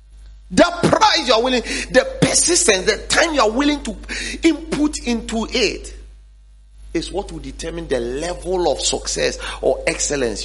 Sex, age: male, 40-59